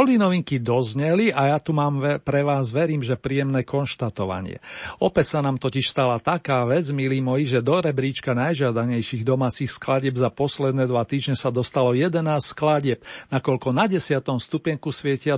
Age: 50-69